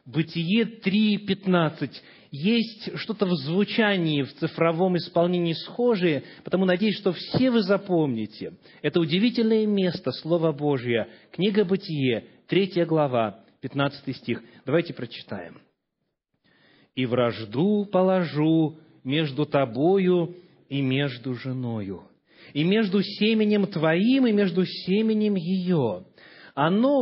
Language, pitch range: Russian, 140-200 Hz